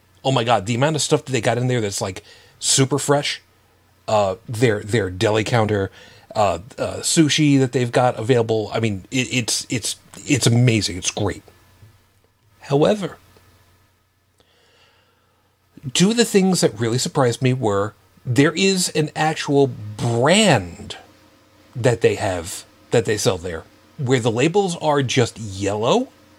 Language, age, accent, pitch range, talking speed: English, 40-59, American, 105-135 Hz, 150 wpm